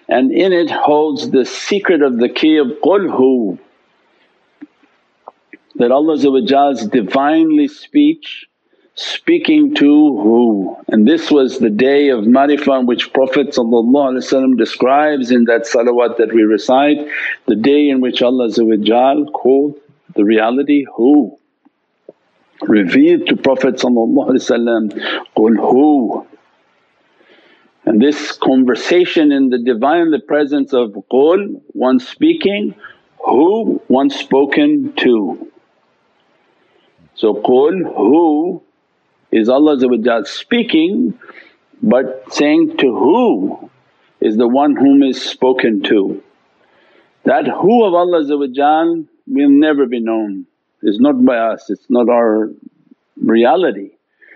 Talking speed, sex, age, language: 110 wpm, male, 60-79, English